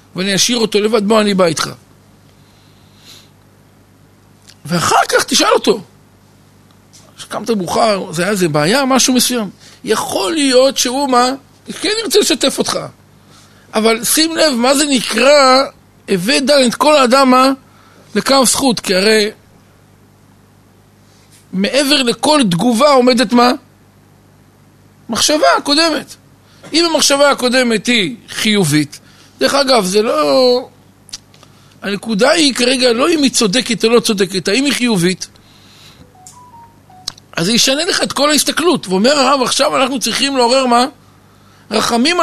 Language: Hebrew